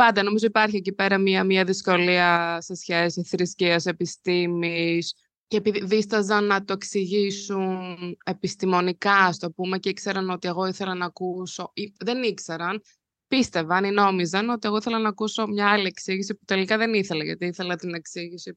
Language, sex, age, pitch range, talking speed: Greek, female, 20-39, 180-240 Hz, 155 wpm